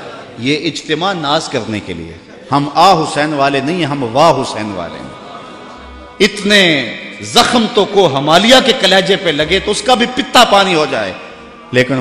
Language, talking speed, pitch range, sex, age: Urdu, 165 wpm, 125-185 Hz, male, 50-69